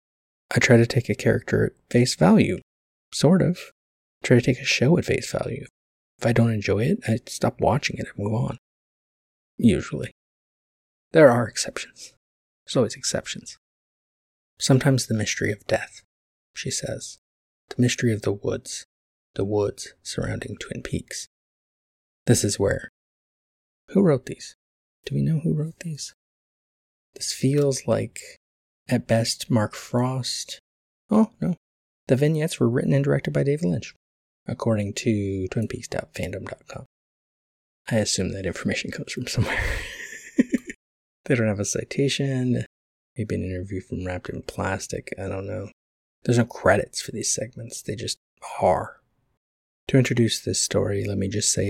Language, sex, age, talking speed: English, male, 20-39, 145 wpm